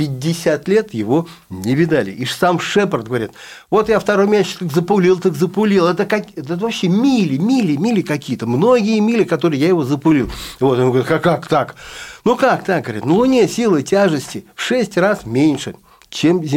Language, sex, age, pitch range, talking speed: Russian, male, 50-69, 130-205 Hz, 180 wpm